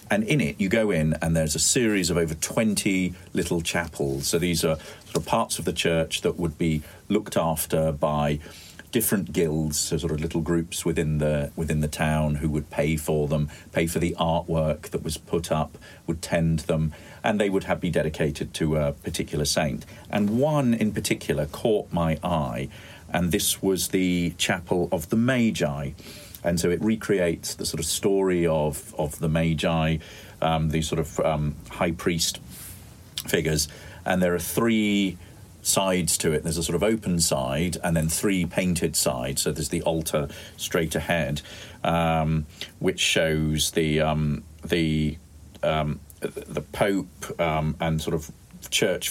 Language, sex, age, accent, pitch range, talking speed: English, male, 40-59, British, 80-95 Hz, 170 wpm